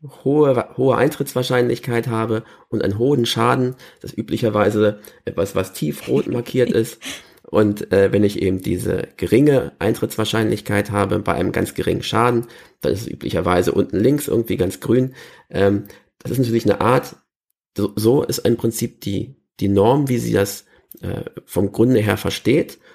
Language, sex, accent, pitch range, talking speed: German, male, German, 105-125 Hz, 155 wpm